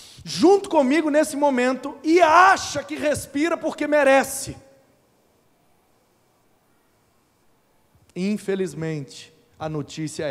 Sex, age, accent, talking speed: male, 40-59, Brazilian, 75 wpm